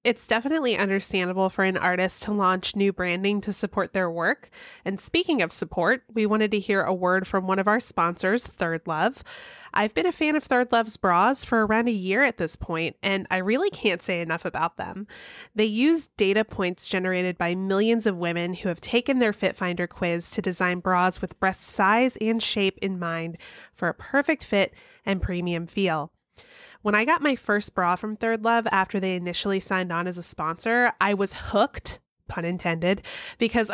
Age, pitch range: 20-39, 180-230 Hz